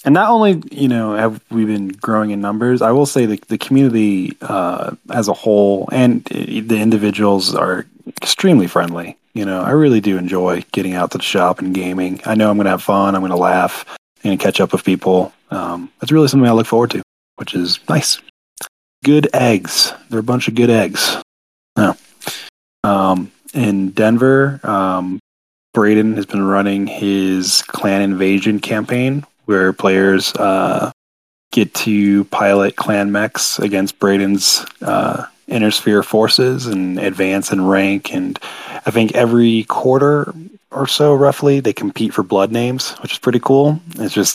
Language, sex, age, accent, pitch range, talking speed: English, male, 20-39, American, 95-120 Hz, 170 wpm